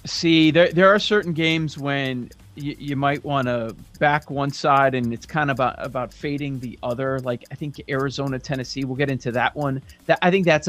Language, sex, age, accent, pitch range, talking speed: English, male, 40-59, American, 130-165 Hz, 215 wpm